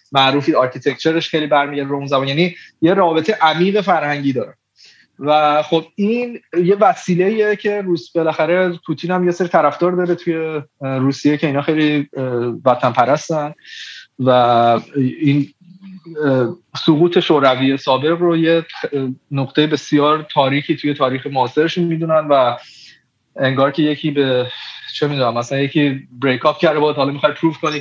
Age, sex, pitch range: 30-49, male, 135-170 Hz